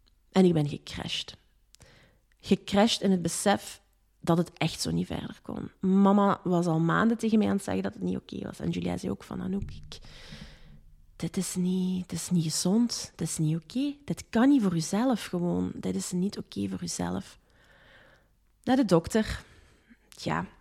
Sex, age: female, 30-49